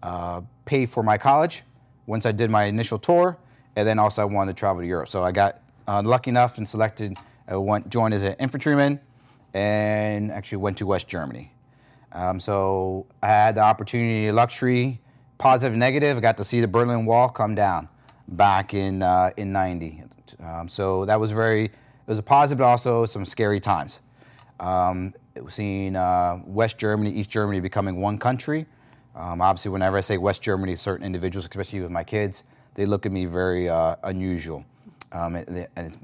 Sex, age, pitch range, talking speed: male, 30-49, 95-125 Hz, 185 wpm